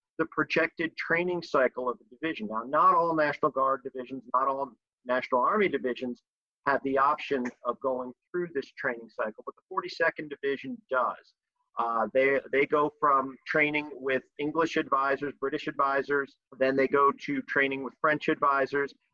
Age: 40-59